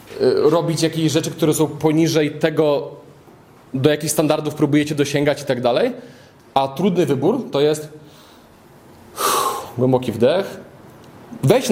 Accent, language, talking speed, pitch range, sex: native, Polish, 120 wpm, 135-170 Hz, male